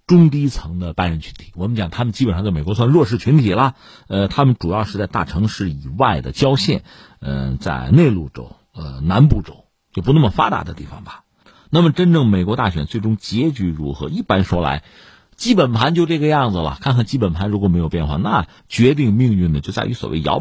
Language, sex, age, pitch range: Chinese, male, 50-69, 90-140 Hz